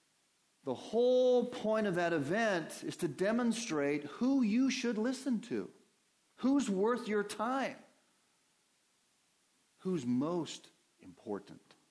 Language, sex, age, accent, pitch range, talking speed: English, male, 40-59, American, 115-165 Hz, 105 wpm